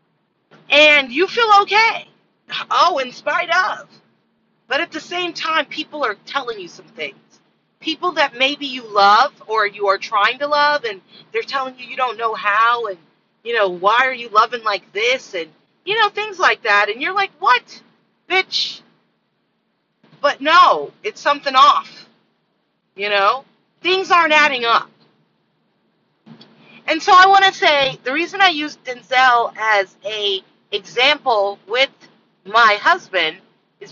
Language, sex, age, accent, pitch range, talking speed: English, female, 40-59, American, 220-320 Hz, 155 wpm